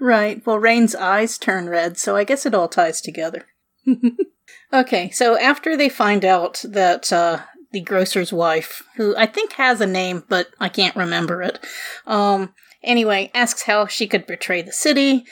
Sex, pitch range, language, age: female, 190-245 Hz, English, 30-49